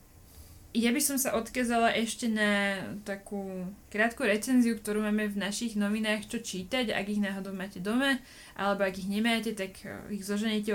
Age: 20-39